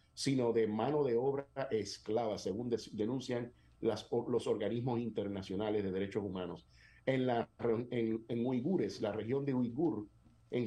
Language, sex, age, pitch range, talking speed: Spanish, male, 50-69, 105-140 Hz, 140 wpm